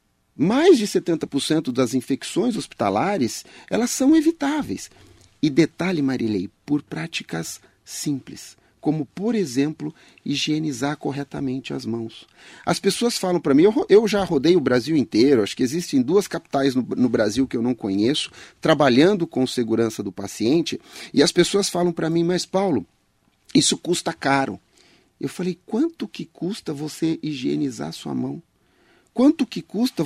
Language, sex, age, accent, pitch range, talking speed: Portuguese, male, 40-59, Brazilian, 130-200 Hz, 150 wpm